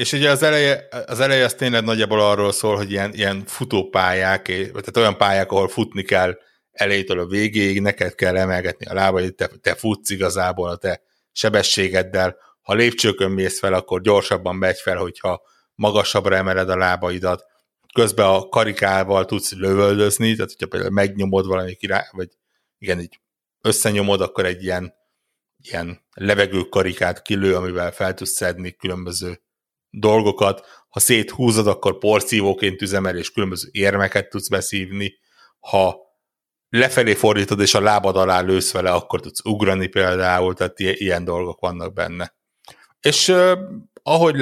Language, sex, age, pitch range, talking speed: Hungarian, male, 60-79, 95-105 Hz, 145 wpm